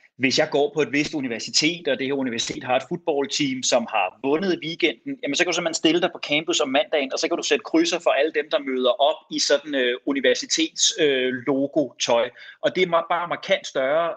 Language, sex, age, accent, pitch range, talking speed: Danish, male, 30-49, native, 140-195 Hz, 230 wpm